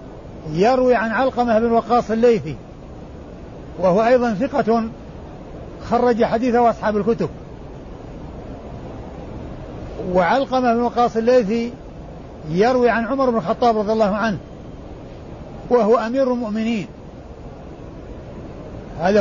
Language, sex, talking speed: Arabic, male, 90 wpm